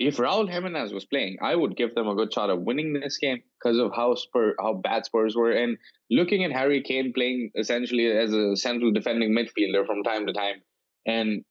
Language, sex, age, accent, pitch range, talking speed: English, male, 20-39, Indian, 105-130 Hz, 215 wpm